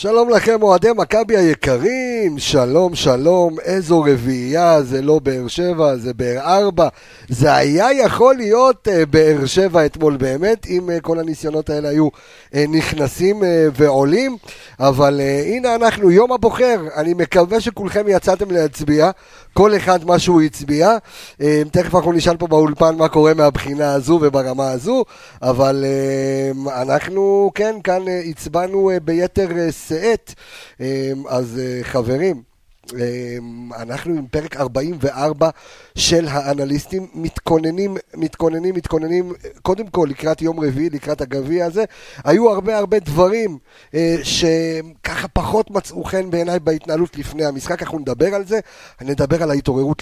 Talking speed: 125 wpm